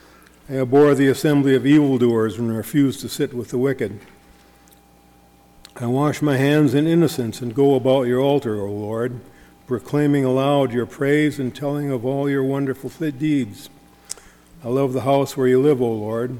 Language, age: English, 50-69